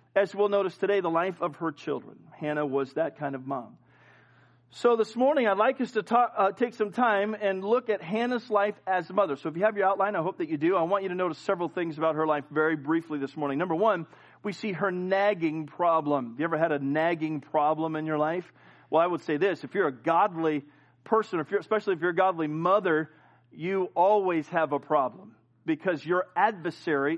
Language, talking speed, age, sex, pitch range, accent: English, 225 wpm, 40-59, male, 155-205 Hz, American